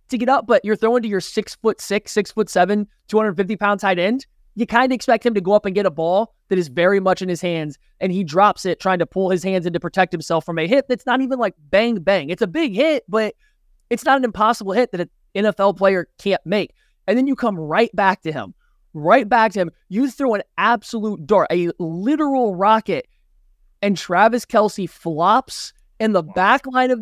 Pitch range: 180-230 Hz